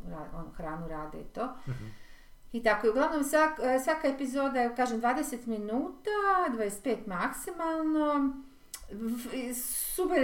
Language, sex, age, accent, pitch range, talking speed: Croatian, female, 40-59, native, 185-260 Hz, 95 wpm